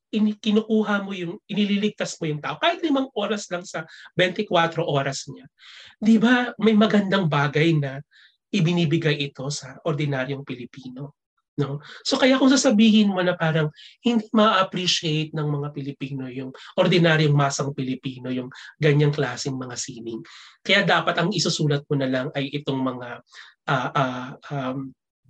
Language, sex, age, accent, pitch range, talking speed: Filipino, male, 30-49, native, 140-185 Hz, 150 wpm